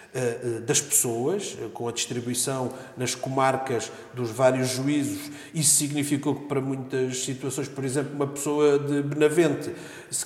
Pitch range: 125-150 Hz